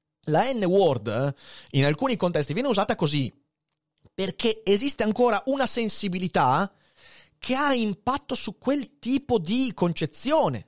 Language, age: Italian, 30-49